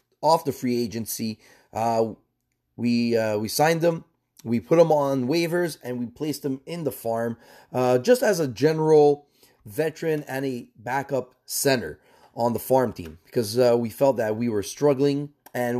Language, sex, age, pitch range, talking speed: English, male, 30-49, 120-150 Hz, 170 wpm